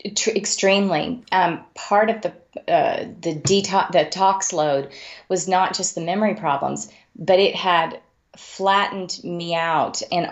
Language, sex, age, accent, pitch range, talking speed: English, female, 30-49, American, 155-190 Hz, 140 wpm